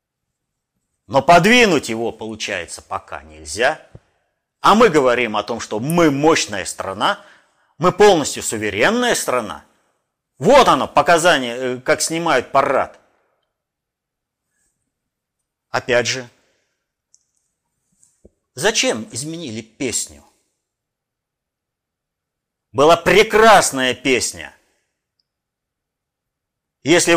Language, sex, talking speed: Russian, male, 75 wpm